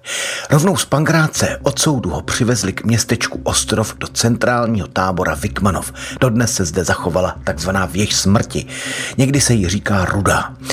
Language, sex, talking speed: Czech, male, 145 wpm